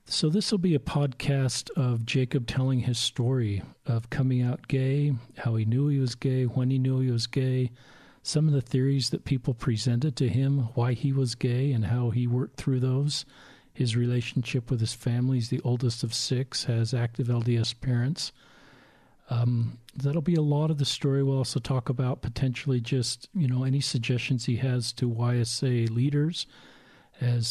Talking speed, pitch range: 185 wpm, 120-135 Hz